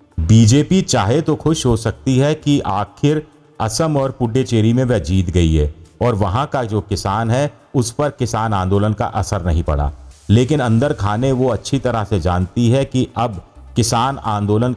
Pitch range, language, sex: 95-125 Hz, Hindi, male